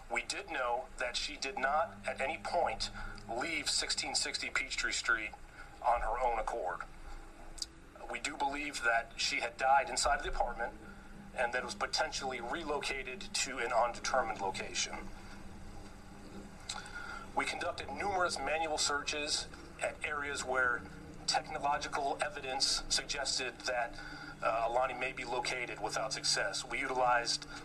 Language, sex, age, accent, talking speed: English, male, 40-59, American, 130 wpm